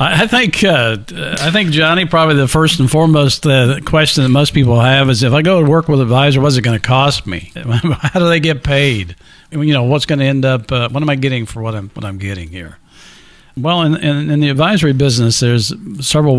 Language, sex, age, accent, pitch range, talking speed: English, male, 50-69, American, 110-145 Hz, 245 wpm